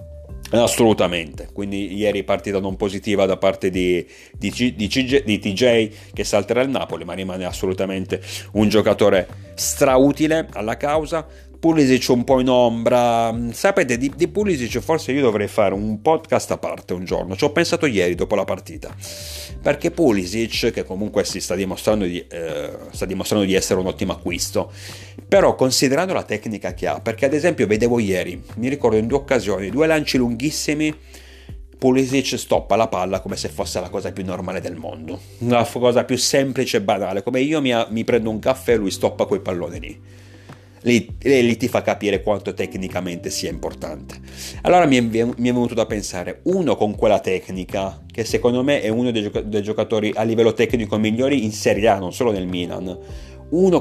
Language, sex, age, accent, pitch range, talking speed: Italian, male, 40-59, native, 95-130 Hz, 170 wpm